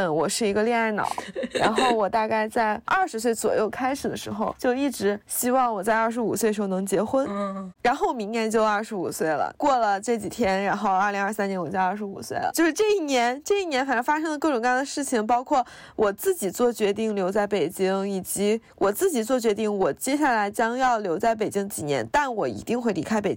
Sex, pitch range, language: female, 200-240 Hz, Chinese